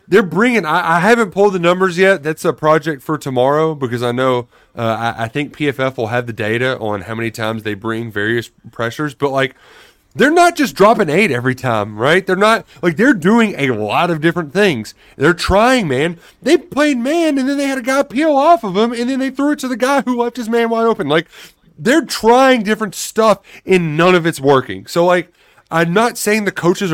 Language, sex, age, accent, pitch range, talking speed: English, male, 30-49, American, 145-230 Hz, 230 wpm